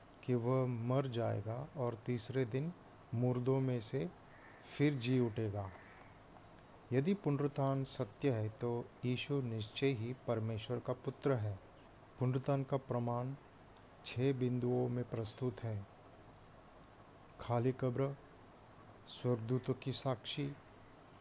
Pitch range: 115-135 Hz